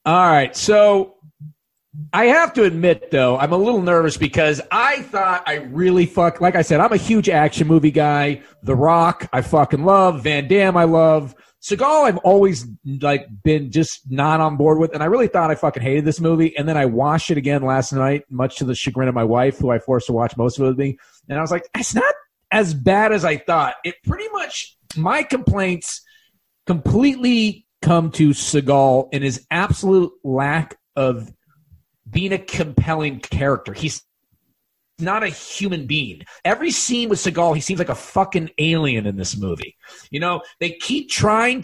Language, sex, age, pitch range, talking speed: English, male, 40-59, 145-205 Hz, 195 wpm